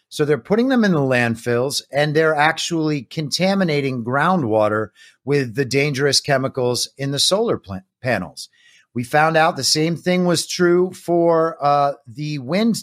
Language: English